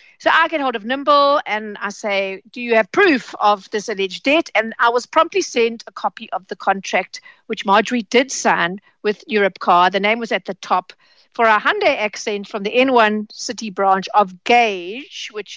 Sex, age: female, 60-79